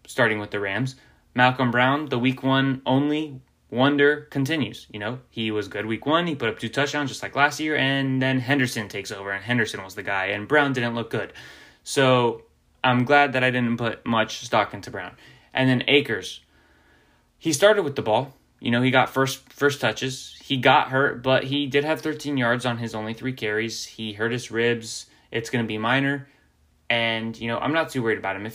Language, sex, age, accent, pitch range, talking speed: English, male, 10-29, American, 110-130 Hz, 215 wpm